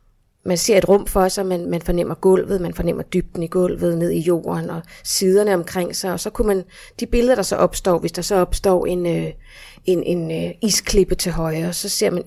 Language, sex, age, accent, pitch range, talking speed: Danish, female, 30-49, native, 175-205 Hz, 230 wpm